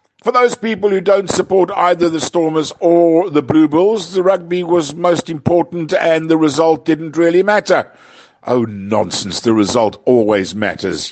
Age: 60-79